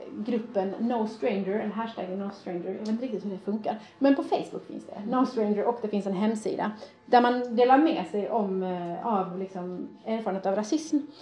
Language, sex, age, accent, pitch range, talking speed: Swedish, female, 30-49, native, 205-265 Hz, 200 wpm